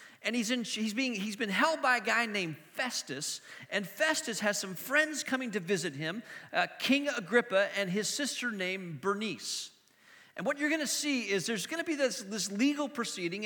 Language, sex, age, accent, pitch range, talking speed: English, male, 40-59, American, 185-240 Hz, 200 wpm